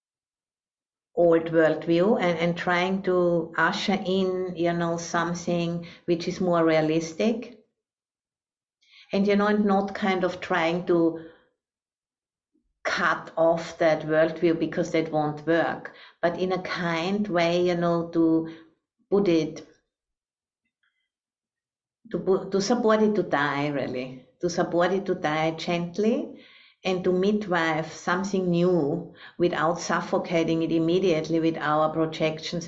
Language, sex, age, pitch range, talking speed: English, female, 60-79, 165-195 Hz, 125 wpm